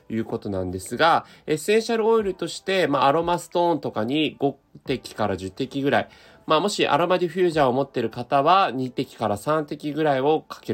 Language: Japanese